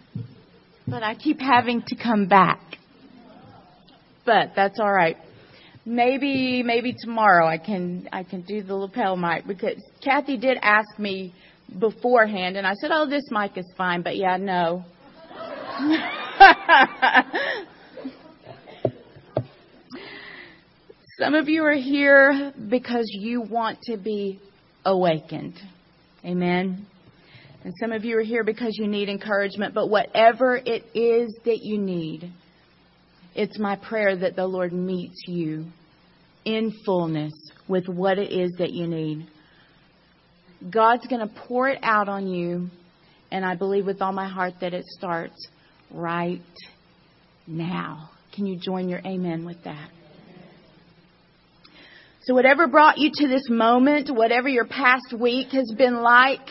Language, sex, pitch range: English, female, 175-235 Hz